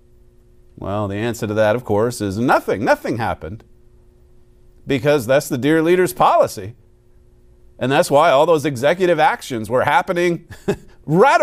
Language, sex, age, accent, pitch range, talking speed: English, male, 40-59, American, 105-160 Hz, 140 wpm